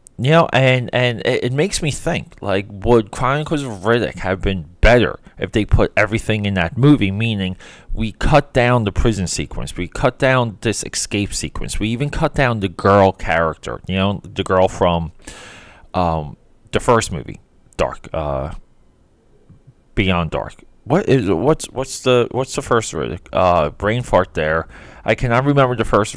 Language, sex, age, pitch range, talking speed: English, male, 20-39, 90-130 Hz, 175 wpm